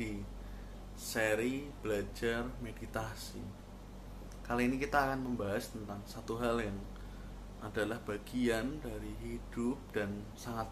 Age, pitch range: 20-39, 100-125 Hz